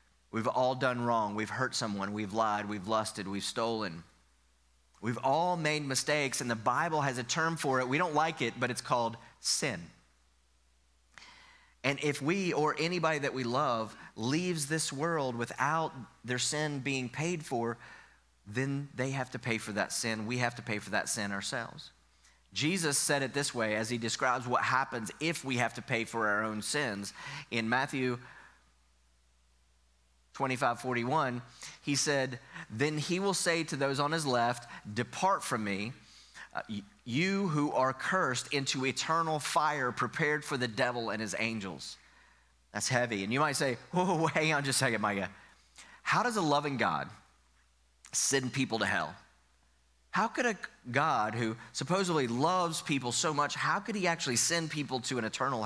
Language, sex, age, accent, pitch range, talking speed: English, male, 30-49, American, 105-145 Hz, 170 wpm